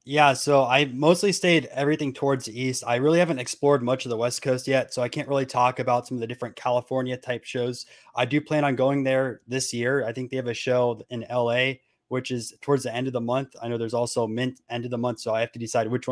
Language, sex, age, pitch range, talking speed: English, male, 20-39, 125-145 Hz, 265 wpm